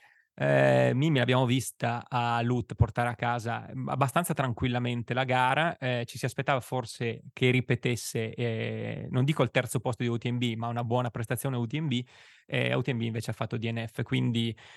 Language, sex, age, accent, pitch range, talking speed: Italian, male, 20-39, native, 115-135 Hz, 165 wpm